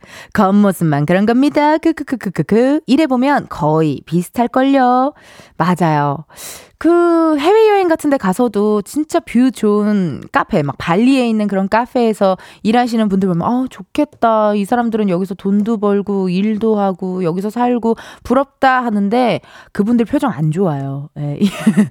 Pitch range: 195-280 Hz